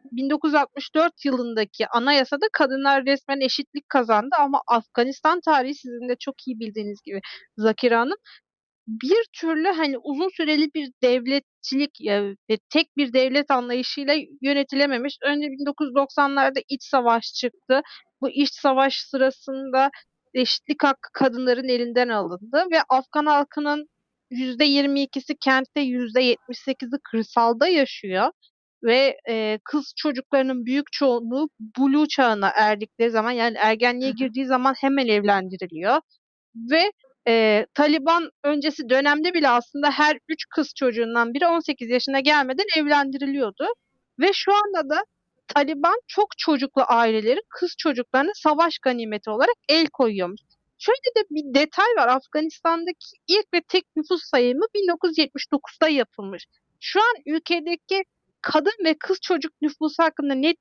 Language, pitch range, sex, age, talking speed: Turkish, 245-310 Hz, female, 30-49, 125 wpm